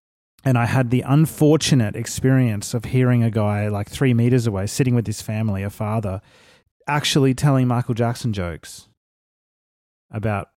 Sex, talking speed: male, 145 wpm